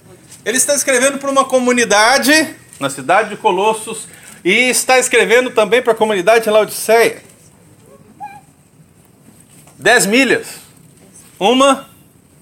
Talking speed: 100 wpm